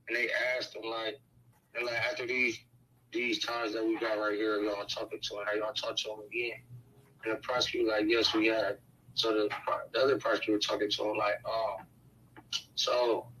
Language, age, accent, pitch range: English, 20-39, American, 110-135 Hz